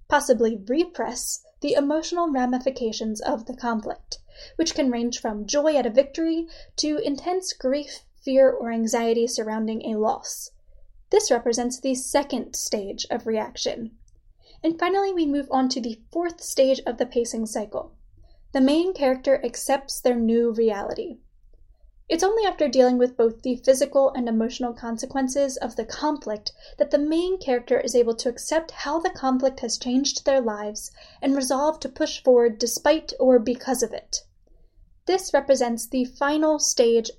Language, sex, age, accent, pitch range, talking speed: English, female, 10-29, American, 235-300 Hz, 155 wpm